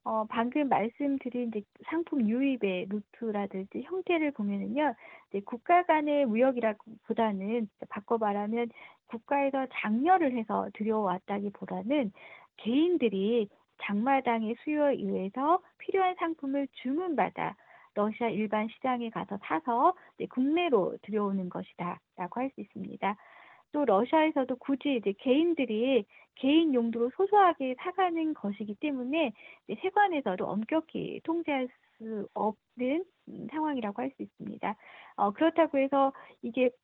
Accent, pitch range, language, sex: native, 215-295 Hz, Korean, female